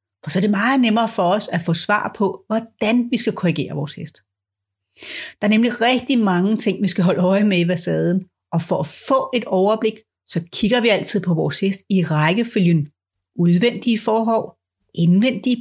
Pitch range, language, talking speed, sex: 165-225 Hz, Danish, 190 wpm, female